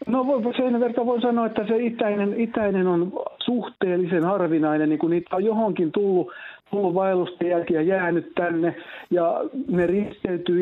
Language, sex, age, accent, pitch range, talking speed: Finnish, male, 50-69, native, 150-190 Hz, 145 wpm